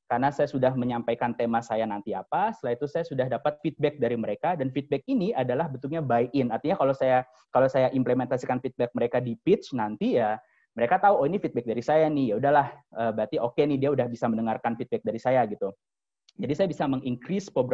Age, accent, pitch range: 20-39, native, 115-145 Hz